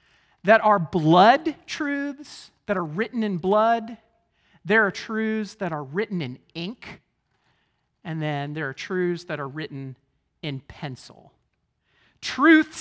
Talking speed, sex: 130 wpm, male